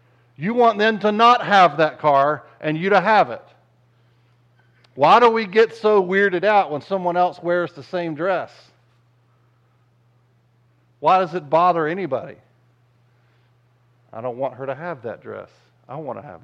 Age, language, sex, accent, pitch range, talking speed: 50-69, English, male, American, 120-155 Hz, 160 wpm